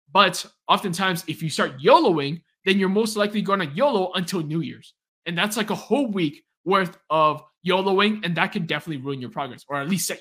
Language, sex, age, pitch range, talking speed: English, male, 20-39, 145-200 Hz, 210 wpm